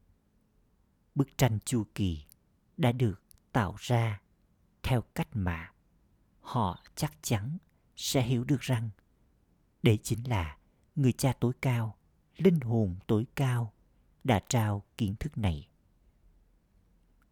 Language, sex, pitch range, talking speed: Vietnamese, male, 95-130 Hz, 120 wpm